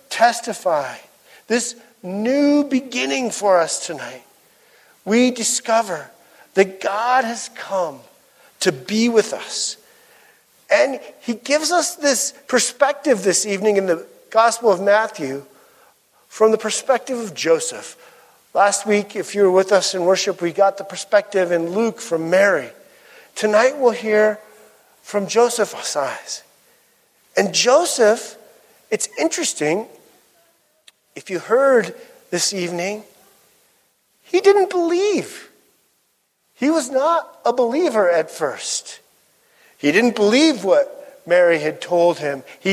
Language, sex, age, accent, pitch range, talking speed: English, male, 50-69, American, 190-280 Hz, 120 wpm